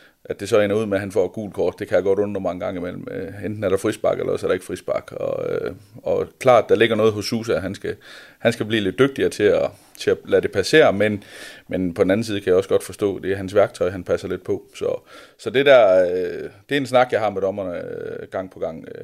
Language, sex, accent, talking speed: Danish, male, native, 275 wpm